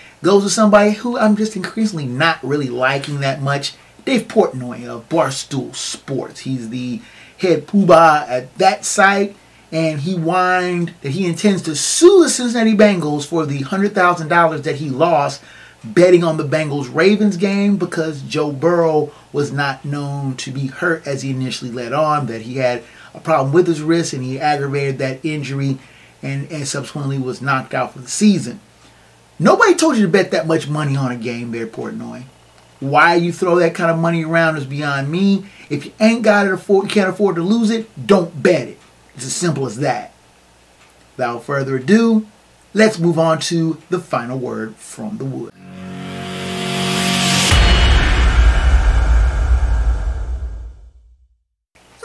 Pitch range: 130-185 Hz